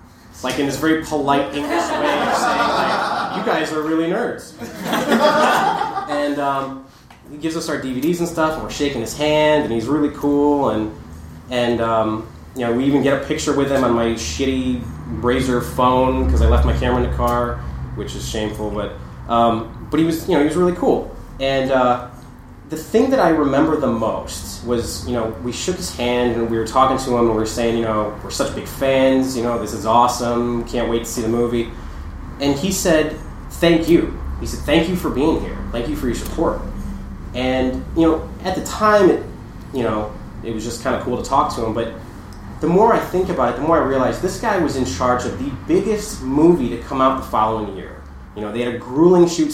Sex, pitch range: male, 110-150 Hz